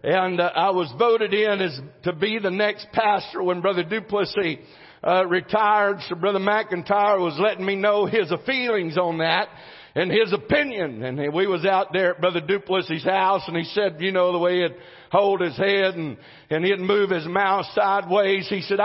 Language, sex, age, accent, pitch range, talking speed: English, male, 60-79, American, 185-270 Hz, 190 wpm